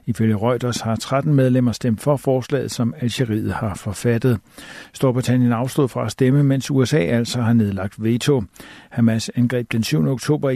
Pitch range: 115-135 Hz